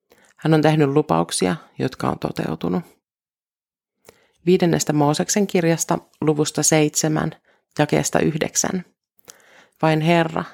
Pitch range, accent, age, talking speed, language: 140-175 Hz, native, 30-49, 90 wpm, Finnish